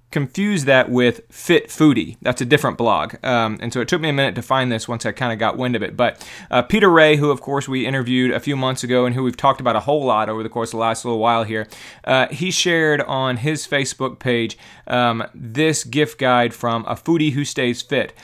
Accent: American